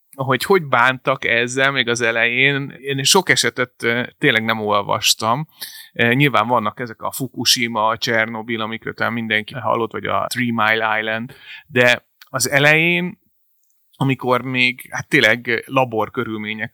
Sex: male